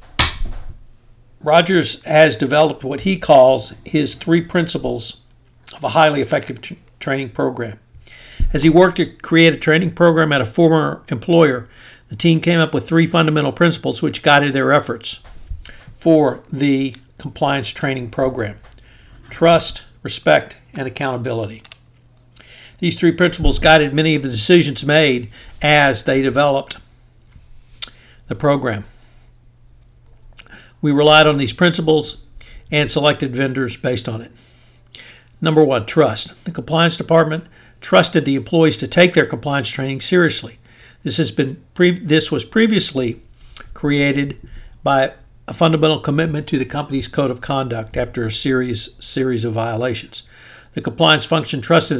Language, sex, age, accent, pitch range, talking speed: English, male, 60-79, American, 120-155 Hz, 135 wpm